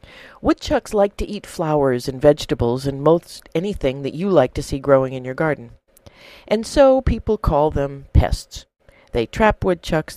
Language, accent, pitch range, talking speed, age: English, American, 150-235 Hz, 165 wpm, 50-69